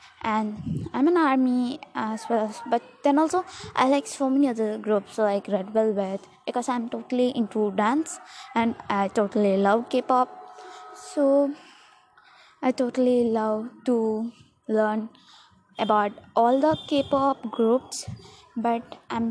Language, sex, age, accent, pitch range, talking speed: English, female, 20-39, Indian, 225-285 Hz, 125 wpm